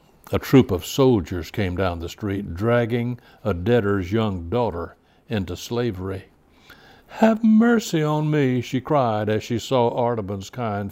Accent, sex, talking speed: American, male, 145 wpm